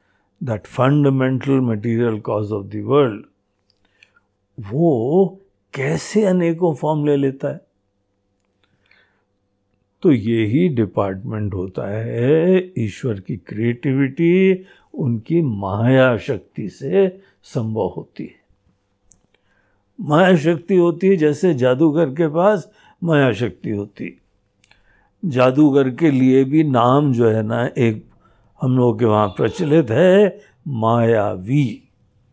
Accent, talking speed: native, 100 wpm